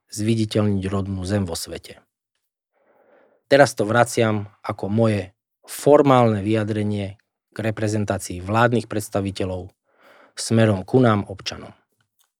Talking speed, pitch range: 95 wpm, 105-120 Hz